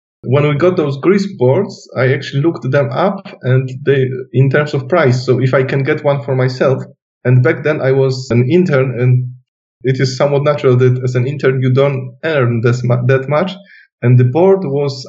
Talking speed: 205 wpm